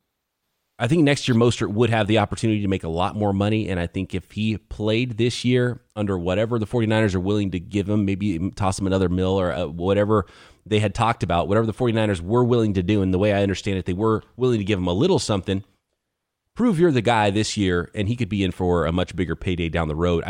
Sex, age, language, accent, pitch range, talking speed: male, 30-49, English, American, 90-115 Hz, 250 wpm